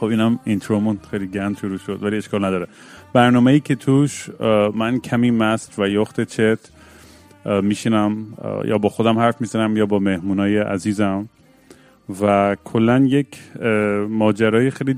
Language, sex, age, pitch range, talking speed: Persian, male, 30-49, 100-115 Hz, 135 wpm